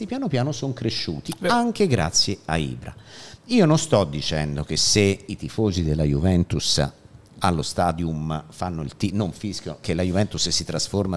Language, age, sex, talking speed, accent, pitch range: Italian, 50-69, male, 160 wpm, native, 95-135 Hz